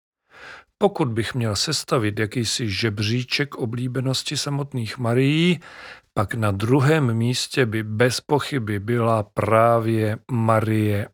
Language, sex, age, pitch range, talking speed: Czech, male, 40-59, 110-135 Hz, 100 wpm